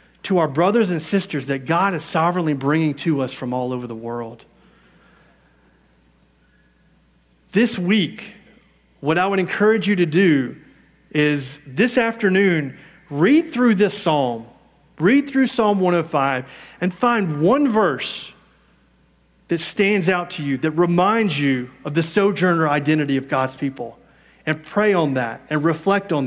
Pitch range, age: 145-205 Hz, 40-59